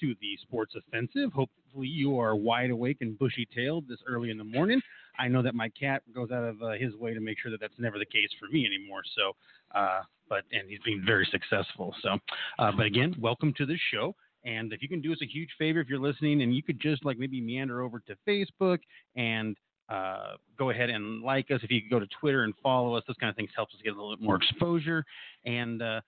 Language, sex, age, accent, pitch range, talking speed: English, male, 30-49, American, 115-150 Hz, 240 wpm